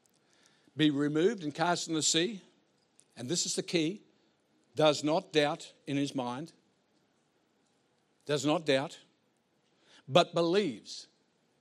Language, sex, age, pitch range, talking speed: English, male, 60-79, 150-195 Hz, 120 wpm